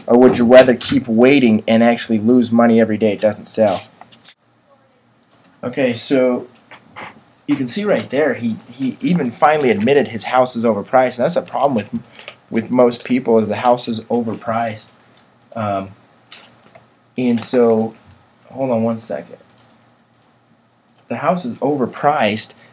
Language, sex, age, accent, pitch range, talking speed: English, male, 20-39, American, 115-145 Hz, 145 wpm